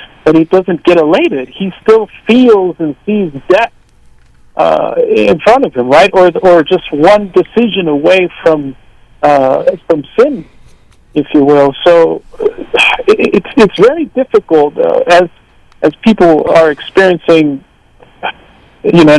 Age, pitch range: 50-69, 145-205 Hz